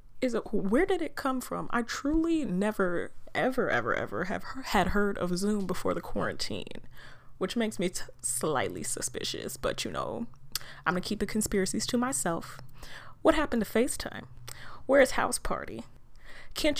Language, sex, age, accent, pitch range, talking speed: English, female, 20-39, American, 195-265 Hz, 165 wpm